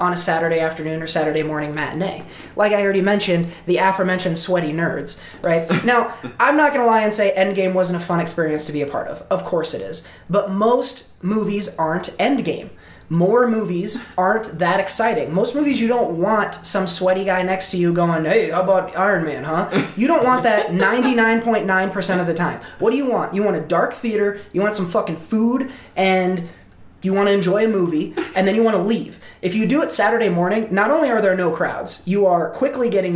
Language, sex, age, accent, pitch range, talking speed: English, male, 20-39, American, 175-230 Hz, 215 wpm